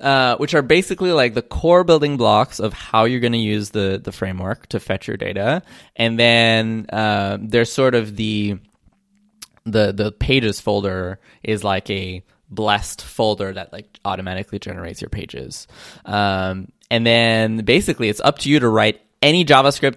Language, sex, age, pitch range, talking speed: English, male, 20-39, 100-115 Hz, 170 wpm